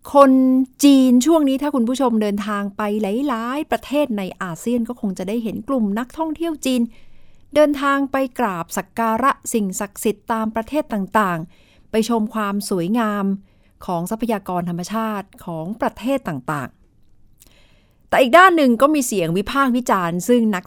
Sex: female